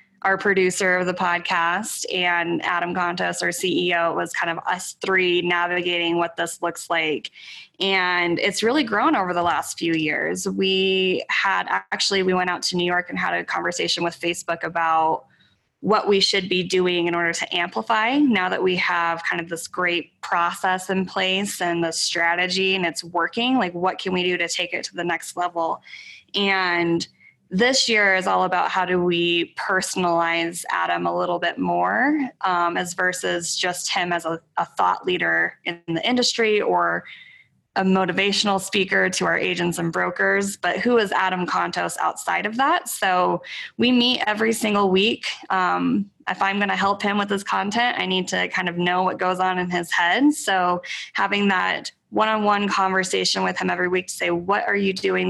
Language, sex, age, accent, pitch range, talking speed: English, female, 20-39, American, 175-200 Hz, 185 wpm